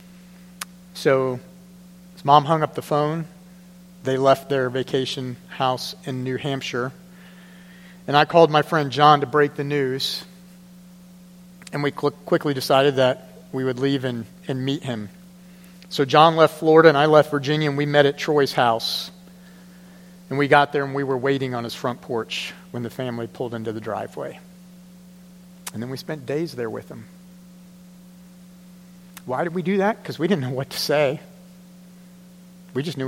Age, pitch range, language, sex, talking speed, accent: 40-59, 145-180 Hz, English, male, 170 wpm, American